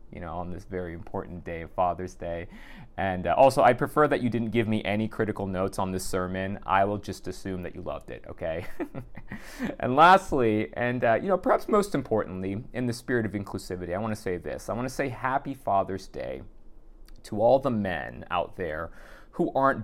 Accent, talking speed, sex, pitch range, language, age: American, 205 wpm, male, 90-115 Hz, English, 30-49